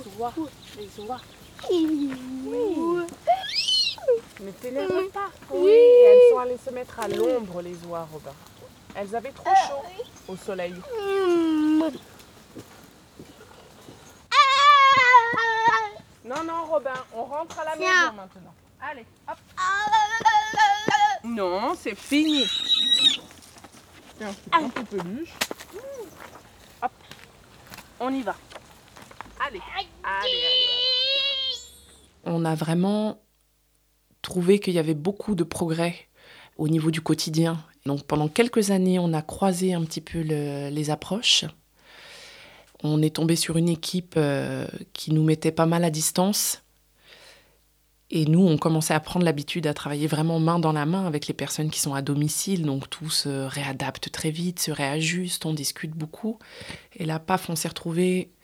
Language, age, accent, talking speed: French, 20-39, French, 130 wpm